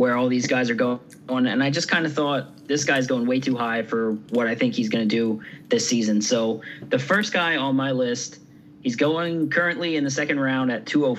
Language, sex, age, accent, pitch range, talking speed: English, male, 30-49, American, 115-150 Hz, 245 wpm